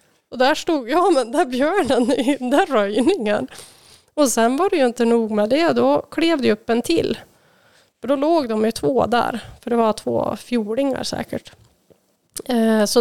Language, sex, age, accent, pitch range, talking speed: Swedish, female, 20-39, native, 220-275 Hz, 185 wpm